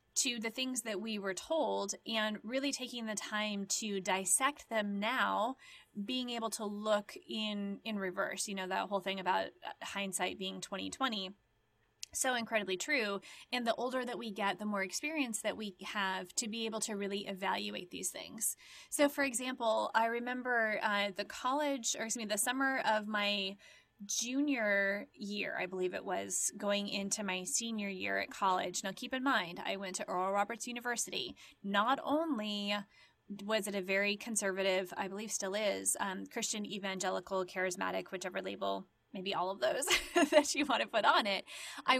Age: 20-39